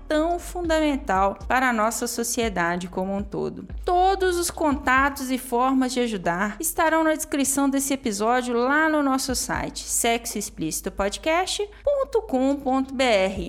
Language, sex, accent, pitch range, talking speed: Portuguese, female, Brazilian, 240-320 Hz, 115 wpm